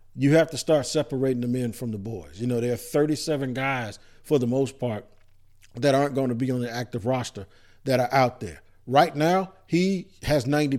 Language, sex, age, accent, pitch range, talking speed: English, male, 50-69, American, 120-155 Hz, 210 wpm